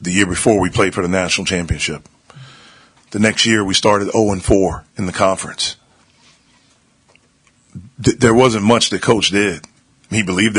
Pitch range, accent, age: 90-105 Hz, American, 40-59